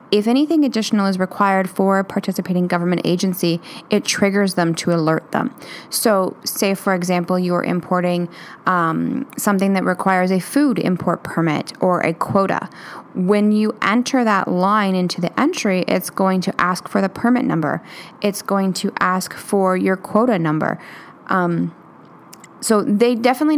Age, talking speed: 10-29, 155 wpm